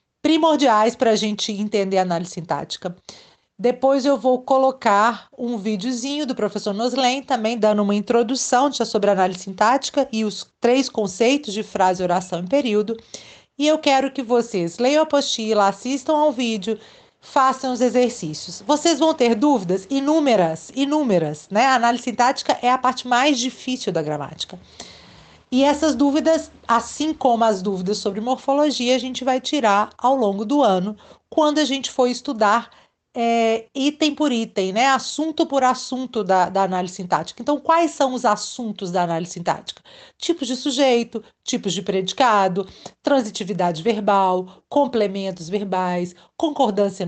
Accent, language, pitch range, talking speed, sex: Brazilian, Portuguese, 195-270 Hz, 150 wpm, female